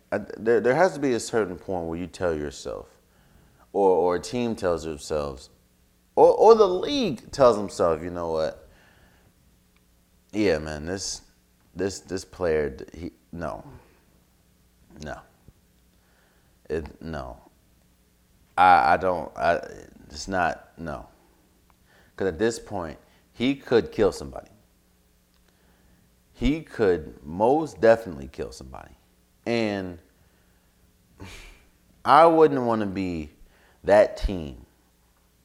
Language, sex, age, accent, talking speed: English, male, 30-49, American, 110 wpm